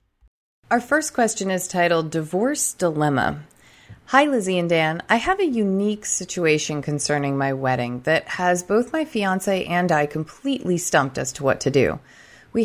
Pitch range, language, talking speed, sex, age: 145-210 Hz, English, 160 wpm, female, 30-49